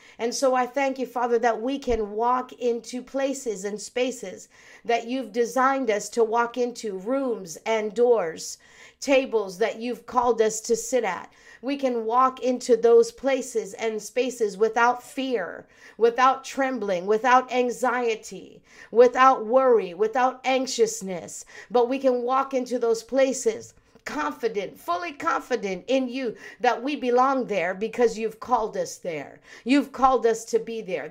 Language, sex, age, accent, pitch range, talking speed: English, female, 50-69, American, 210-250 Hz, 150 wpm